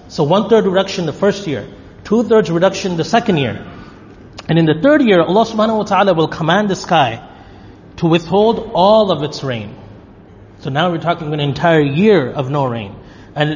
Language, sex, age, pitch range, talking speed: English, male, 30-49, 130-195 Hz, 180 wpm